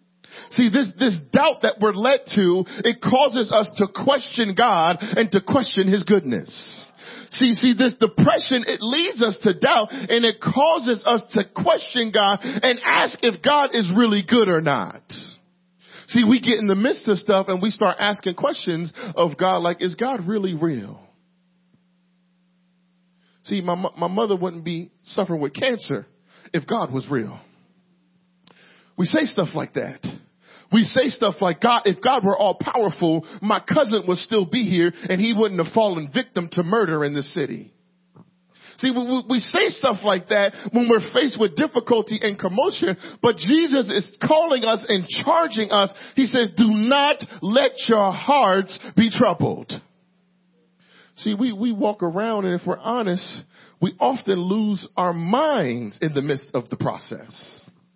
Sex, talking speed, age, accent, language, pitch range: male, 165 wpm, 40-59, American, English, 180-240 Hz